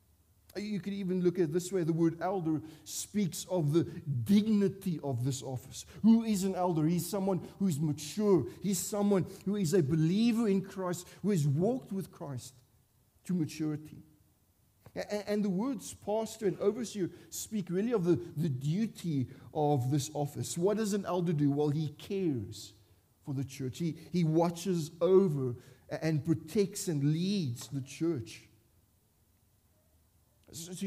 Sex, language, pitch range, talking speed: male, English, 140-195 Hz, 150 wpm